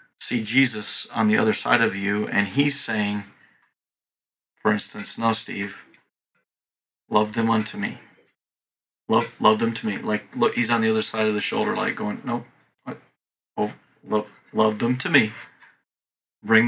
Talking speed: 160 wpm